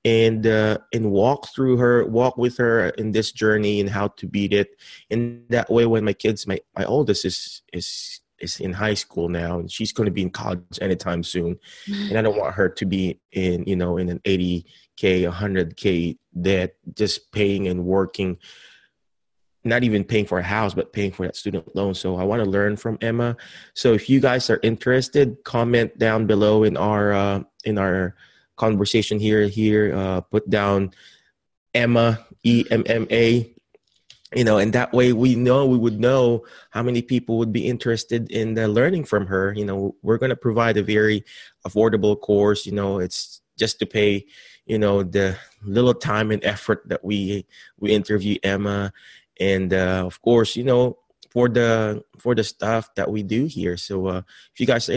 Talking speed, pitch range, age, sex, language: 190 wpm, 100-115 Hz, 20-39, male, English